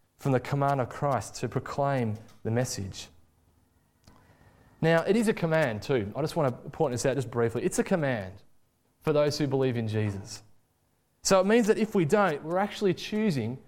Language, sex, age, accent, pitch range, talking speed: English, male, 20-39, Australian, 105-165 Hz, 190 wpm